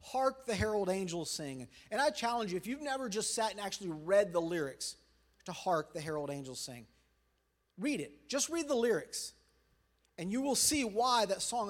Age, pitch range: 40-59, 185-240 Hz